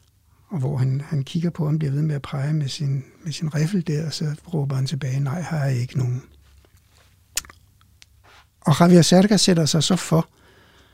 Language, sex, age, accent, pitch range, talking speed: Danish, male, 60-79, native, 125-165 Hz, 195 wpm